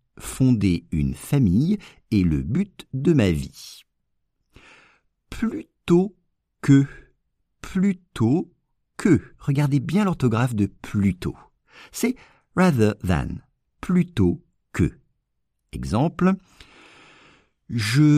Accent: French